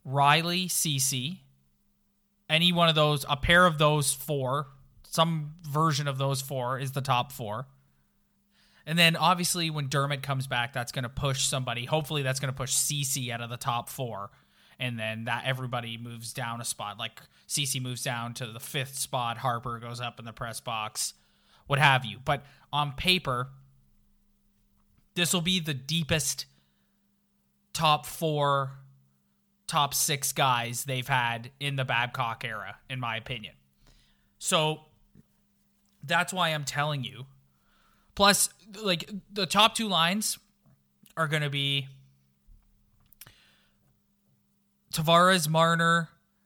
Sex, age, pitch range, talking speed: male, 20-39, 120-155 Hz, 140 wpm